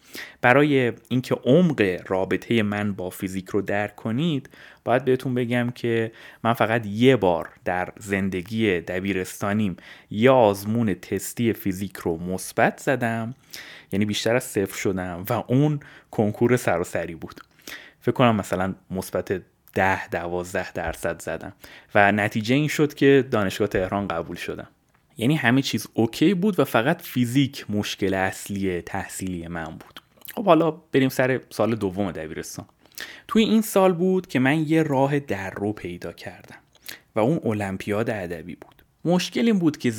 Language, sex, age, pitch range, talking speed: Persian, male, 30-49, 95-135 Hz, 145 wpm